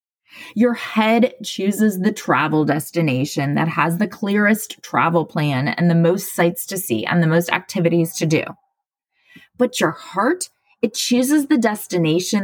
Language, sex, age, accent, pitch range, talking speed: English, female, 20-39, American, 165-230 Hz, 150 wpm